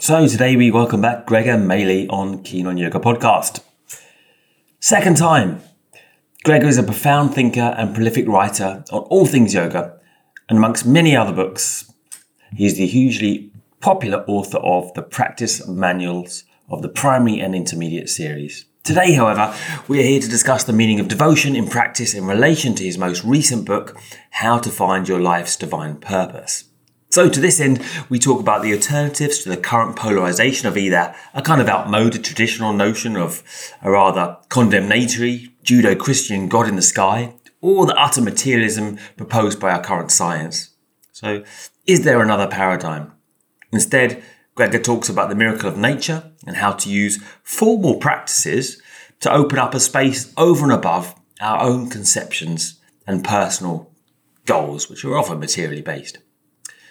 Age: 30-49